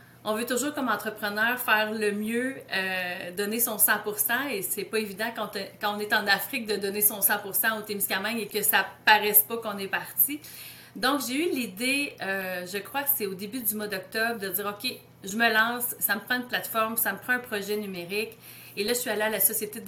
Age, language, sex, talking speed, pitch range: 30-49, French, female, 240 wpm, 200-230 Hz